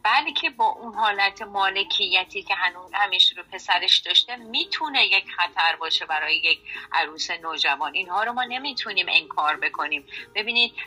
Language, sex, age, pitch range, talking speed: Persian, female, 30-49, 190-280 Hz, 145 wpm